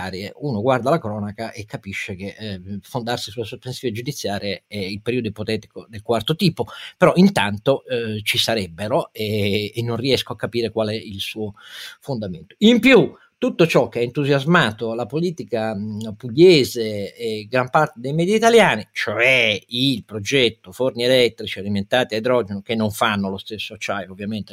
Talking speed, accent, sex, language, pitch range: 165 wpm, native, male, Italian, 105-155 Hz